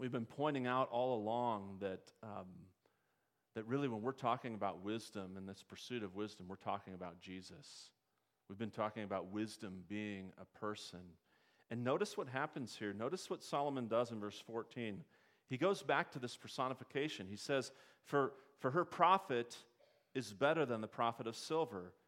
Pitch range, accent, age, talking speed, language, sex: 105-135 Hz, American, 40-59, 170 wpm, English, male